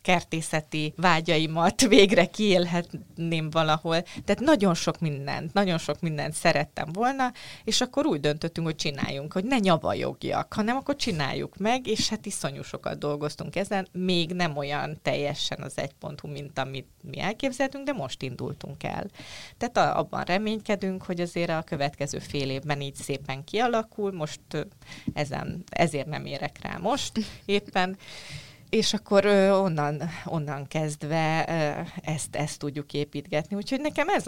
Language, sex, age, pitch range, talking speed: Hungarian, female, 30-49, 145-190 Hz, 140 wpm